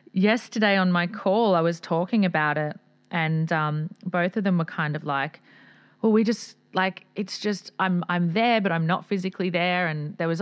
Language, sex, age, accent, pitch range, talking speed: English, female, 30-49, Australian, 165-200 Hz, 200 wpm